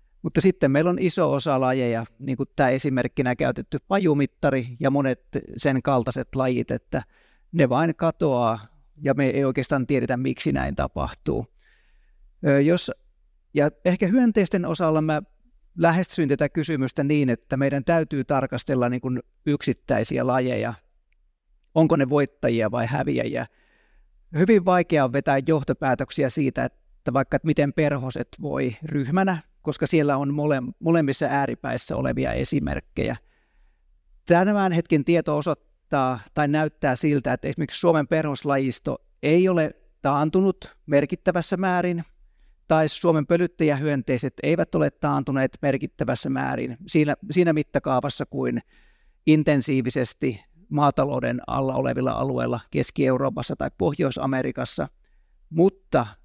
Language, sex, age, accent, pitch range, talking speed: Finnish, male, 30-49, native, 130-160 Hz, 115 wpm